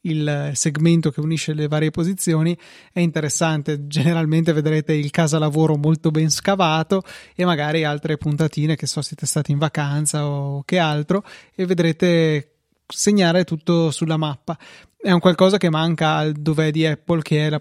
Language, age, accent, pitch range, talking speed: Italian, 20-39, native, 155-170 Hz, 165 wpm